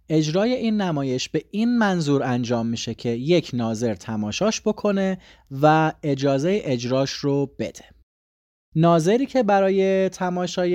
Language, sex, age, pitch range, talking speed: Persian, male, 30-49, 125-180 Hz, 125 wpm